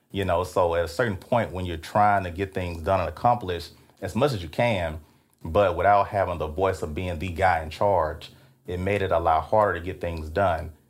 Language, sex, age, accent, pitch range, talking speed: English, male, 30-49, American, 85-100 Hz, 230 wpm